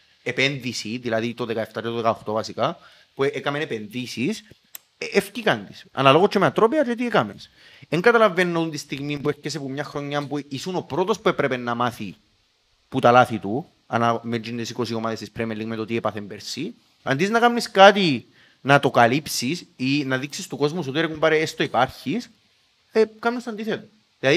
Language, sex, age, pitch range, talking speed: Greek, male, 30-49, 130-220 Hz, 185 wpm